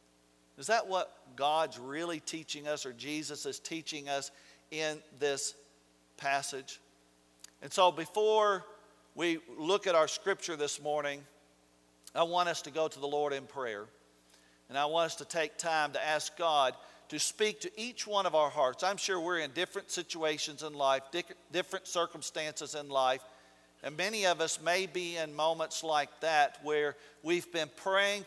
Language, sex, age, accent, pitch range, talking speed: English, male, 50-69, American, 130-170 Hz, 170 wpm